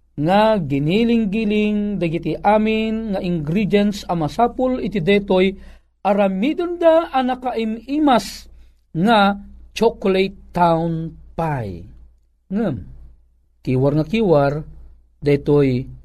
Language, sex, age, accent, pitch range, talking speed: Filipino, male, 40-59, native, 150-235 Hz, 75 wpm